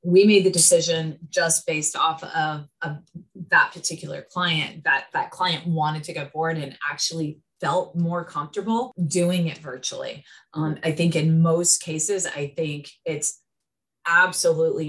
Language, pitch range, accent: English, 155-180 Hz, American